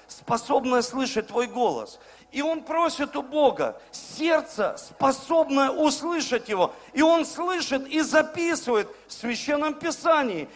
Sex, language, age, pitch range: male, Russian, 50-69, 240-310 Hz